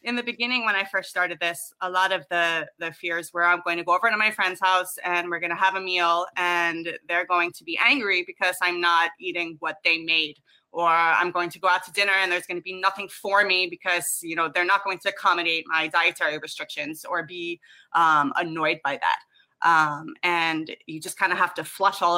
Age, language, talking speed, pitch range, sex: 20-39, English, 235 wpm, 170-200 Hz, female